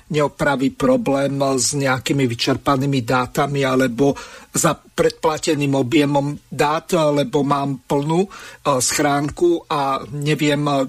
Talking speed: 95 wpm